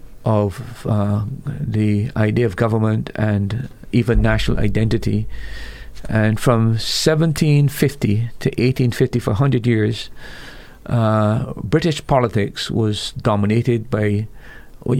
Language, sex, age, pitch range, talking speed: English, male, 50-69, 110-125 Hz, 100 wpm